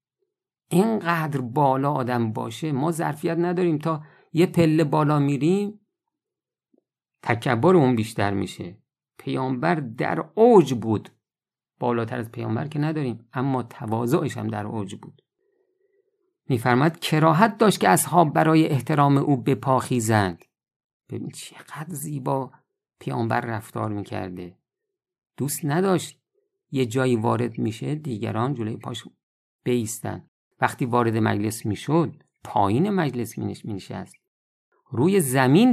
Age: 50-69